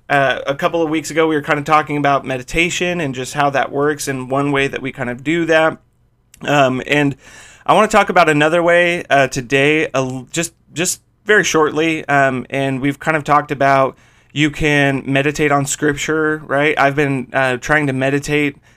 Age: 30-49